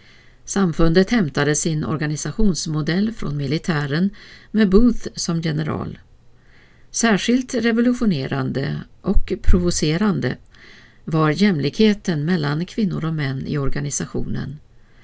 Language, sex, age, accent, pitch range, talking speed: Swedish, female, 50-69, native, 145-200 Hz, 90 wpm